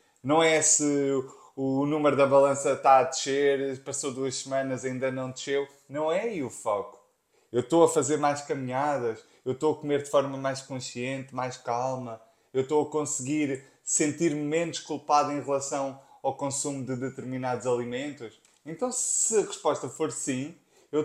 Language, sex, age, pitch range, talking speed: Portuguese, male, 20-39, 120-140 Hz, 165 wpm